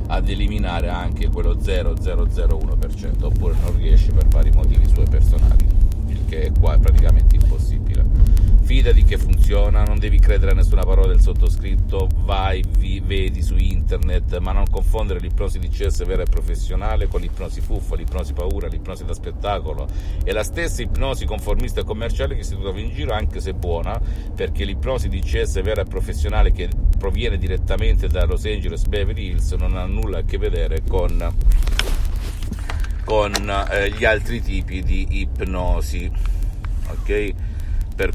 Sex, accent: male, native